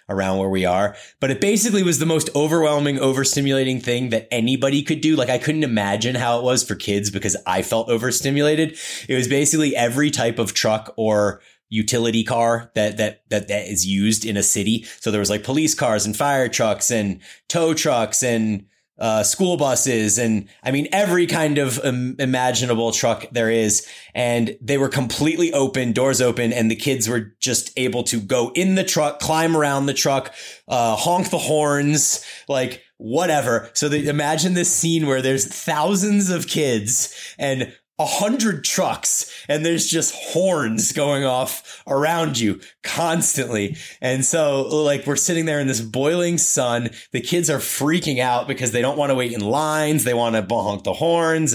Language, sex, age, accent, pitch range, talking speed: English, male, 30-49, American, 115-150 Hz, 180 wpm